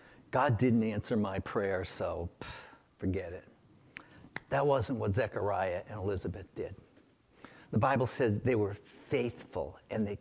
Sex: male